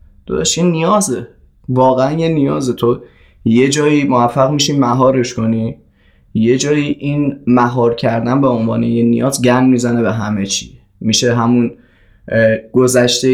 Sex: male